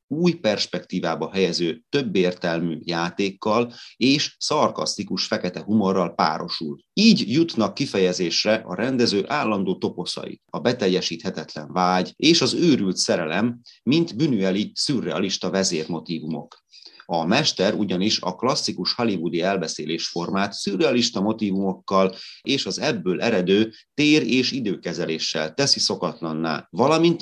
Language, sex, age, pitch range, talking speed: Hungarian, male, 30-49, 85-110 Hz, 105 wpm